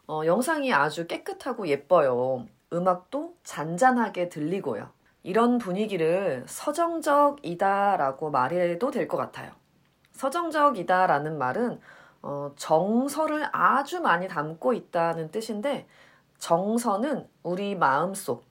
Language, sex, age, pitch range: Korean, female, 30-49, 165-255 Hz